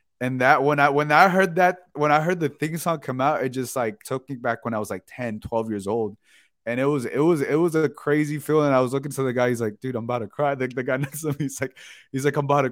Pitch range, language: 100-135 Hz, English